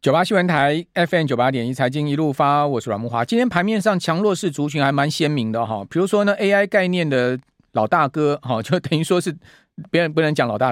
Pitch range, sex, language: 125-170 Hz, male, Chinese